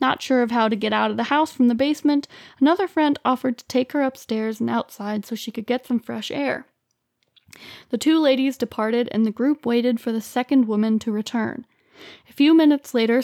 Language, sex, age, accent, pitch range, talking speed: English, female, 20-39, American, 225-265 Hz, 215 wpm